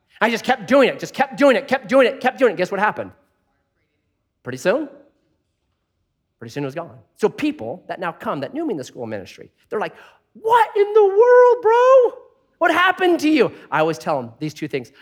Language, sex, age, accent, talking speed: English, male, 30-49, American, 220 wpm